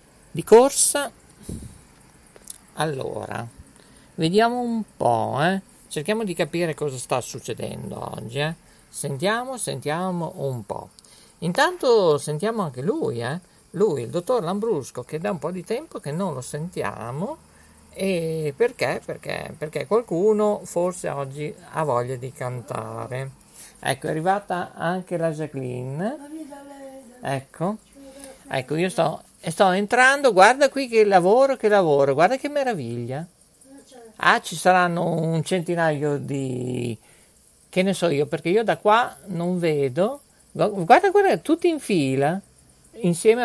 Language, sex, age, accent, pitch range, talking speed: Italian, male, 50-69, native, 145-215 Hz, 130 wpm